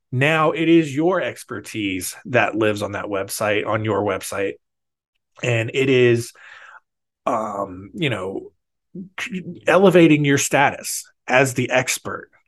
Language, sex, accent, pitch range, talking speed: English, male, American, 110-140 Hz, 120 wpm